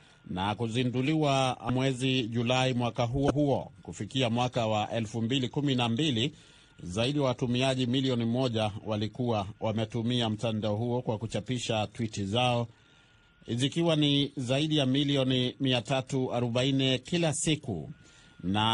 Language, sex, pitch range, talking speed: Swahili, male, 105-130 Hz, 105 wpm